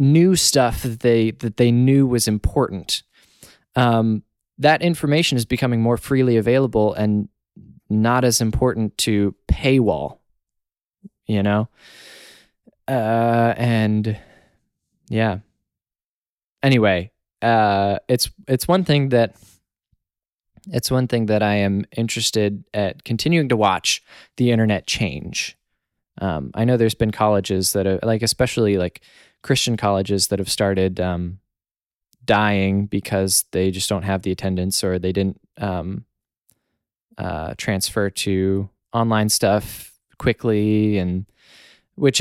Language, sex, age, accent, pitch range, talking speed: English, male, 20-39, American, 100-120 Hz, 120 wpm